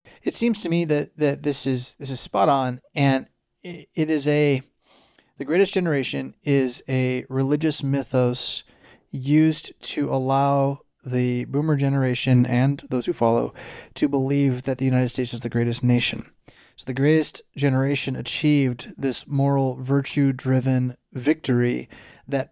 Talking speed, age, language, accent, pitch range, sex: 140 wpm, 30-49, English, American, 125-140 Hz, male